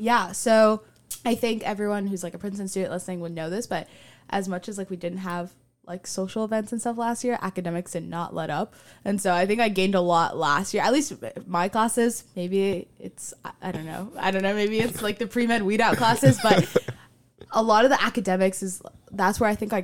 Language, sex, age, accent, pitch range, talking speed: English, female, 10-29, American, 175-215 Hz, 225 wpm